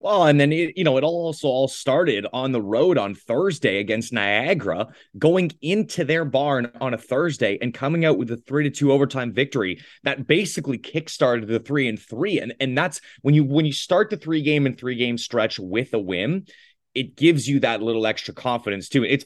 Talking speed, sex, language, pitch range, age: 210 wpm, male, English, 115-155 Hz, 20-39